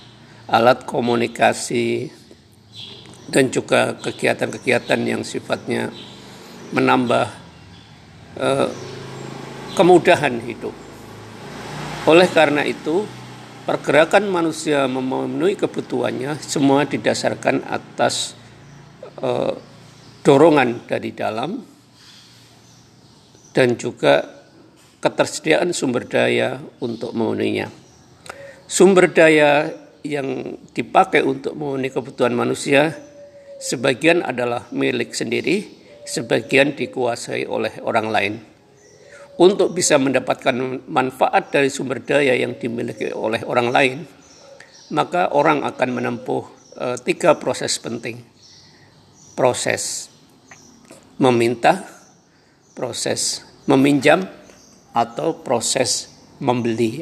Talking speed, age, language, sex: 80 wpm, 50-69, Indonesian, male